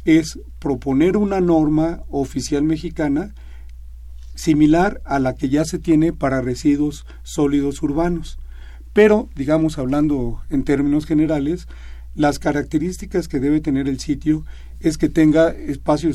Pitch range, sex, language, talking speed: 130-155 Hz, male, Spanish, 125 wpm